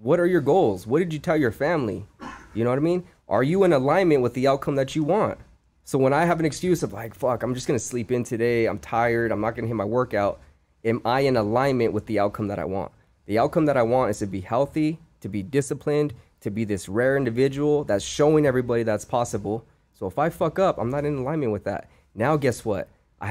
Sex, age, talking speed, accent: male, 20-39, 245 wpm, American